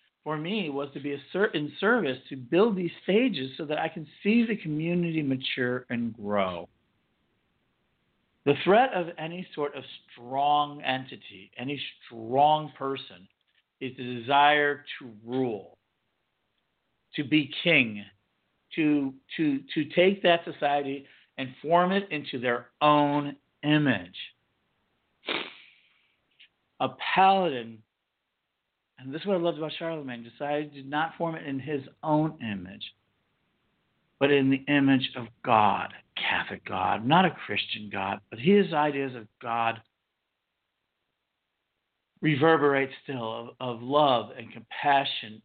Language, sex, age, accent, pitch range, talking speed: English, male, 50-69, American, 125-155 Hz, 130 wpm